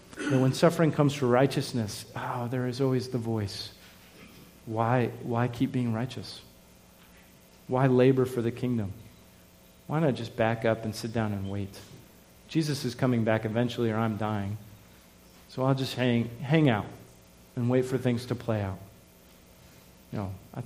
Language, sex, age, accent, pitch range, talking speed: English, male, 40-59, American, 115-145 Hz, 165 wpm